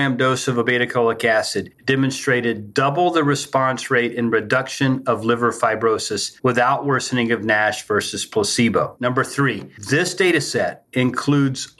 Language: English